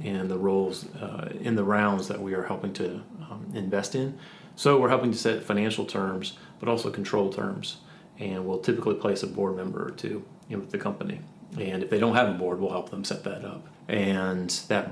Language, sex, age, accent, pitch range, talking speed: English, male, 30-49, American, 100-125 Hz, 215 wpm